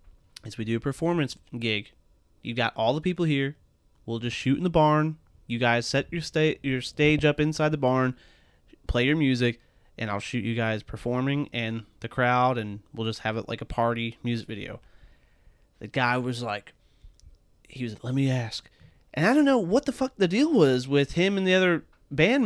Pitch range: 115-170 Hz